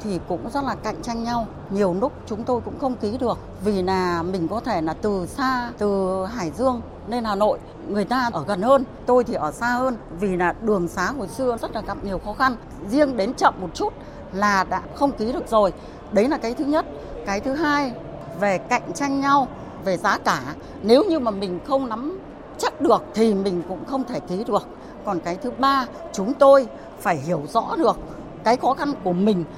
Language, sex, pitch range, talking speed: Vietnamese, female, 185-260 Hz, 215 wpm